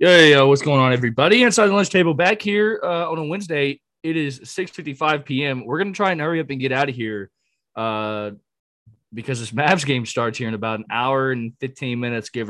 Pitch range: 110-155 Hz